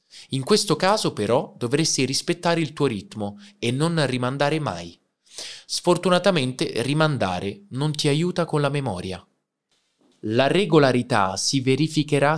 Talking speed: 120 wpm